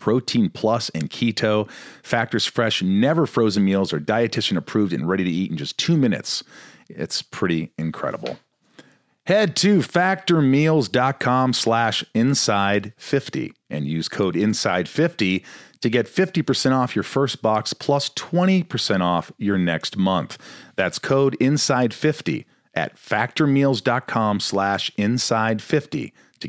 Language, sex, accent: English, male, American